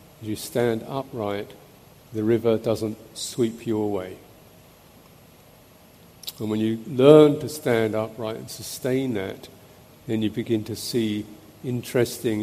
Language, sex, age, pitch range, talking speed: English, male, 50-69, 110-130 Hz, 120 wpm